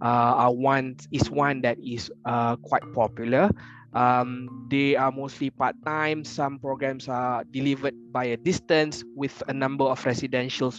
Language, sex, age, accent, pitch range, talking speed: English, male, 20-39, Malaysian, 115-140 Hz, 150 wpm